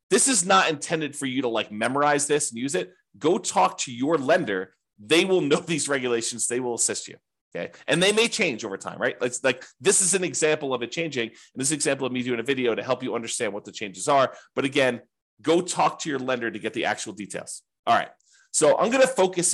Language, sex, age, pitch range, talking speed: English, male, 30-49, 120-150 Hz, 250 wpm